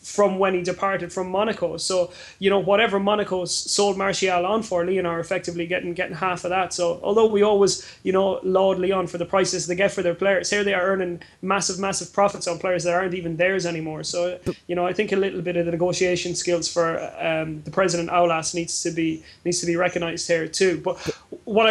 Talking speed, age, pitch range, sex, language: 225 wpm, 20-39, 175-195 Hz, male, English